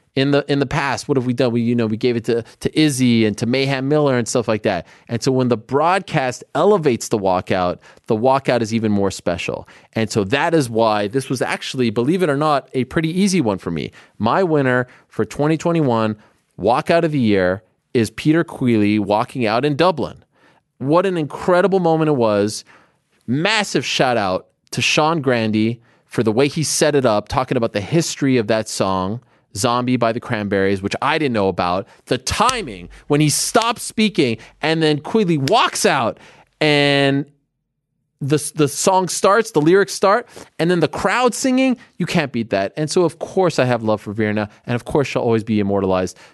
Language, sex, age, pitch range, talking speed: English, male, 30-49, 115-155 Hz, 195 wpm